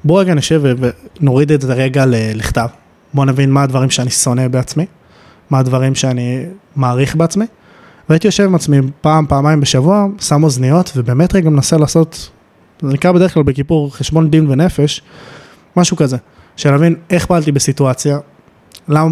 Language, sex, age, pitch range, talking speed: Hebrew, male, 20-39, 130-155 Hz, 155 wpm